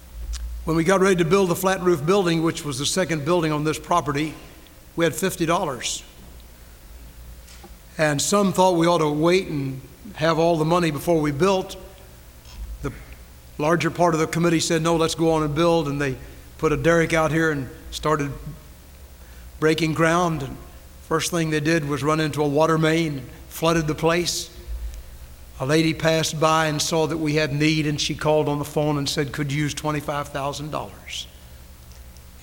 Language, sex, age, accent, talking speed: English, male, 60-79, American, 180 wpm